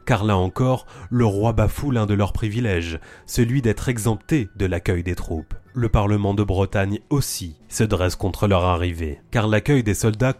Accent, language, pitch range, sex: French, French, 100-130 Hz, male